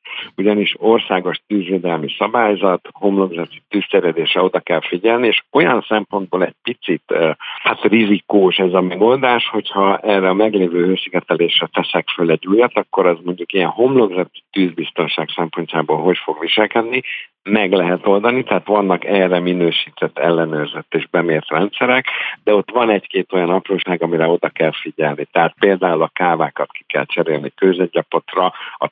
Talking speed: 140 wpm